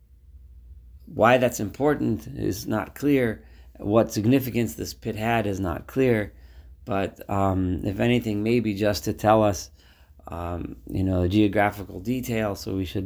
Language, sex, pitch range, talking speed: English, male, 90-110 Hz, 145 wpm